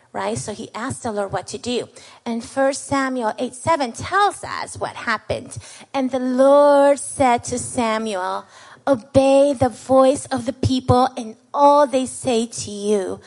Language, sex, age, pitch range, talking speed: English, female, 30-49, 235-285 Hz, 165 wpm